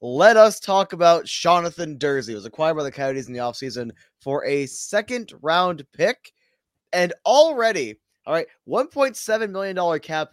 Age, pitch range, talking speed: 20-39, 135-195 Hz, 155 wpm